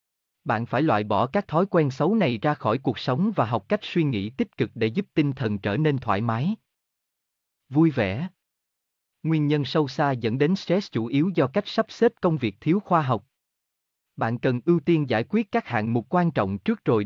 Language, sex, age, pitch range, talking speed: Vietnamese, male, 30-49, 110-170 Hz, 215 wpm